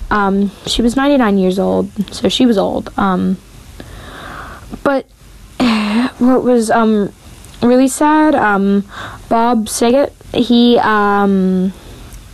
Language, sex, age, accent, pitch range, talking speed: English, female, 10-29, American, 185-230 Hz, 105 wpm